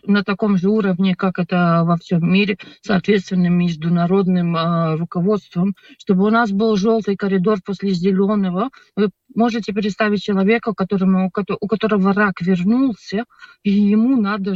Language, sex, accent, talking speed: Russian, female, native, 140 wpm